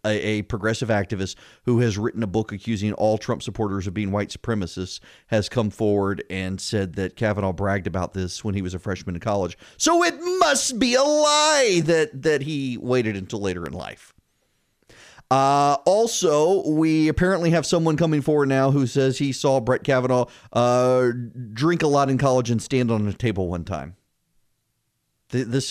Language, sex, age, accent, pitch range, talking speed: English, male, 40-59, American, 115-170 Hz, 175 wpm